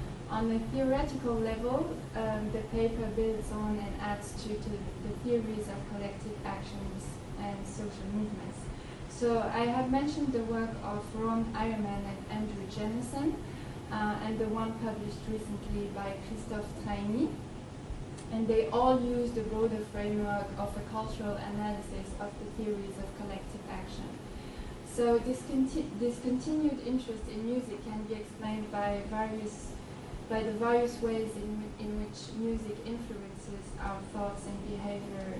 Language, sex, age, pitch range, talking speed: English, female, 20-39, 210-240 Hz, 140 wpm